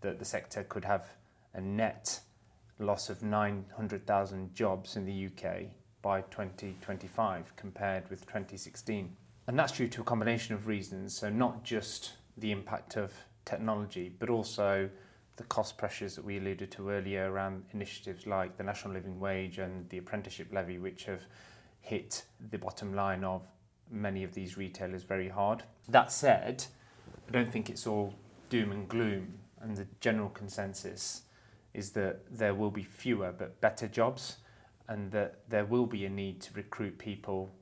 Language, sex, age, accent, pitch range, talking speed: English, male, 30-49, British, 100-110 Hz, 160 wpm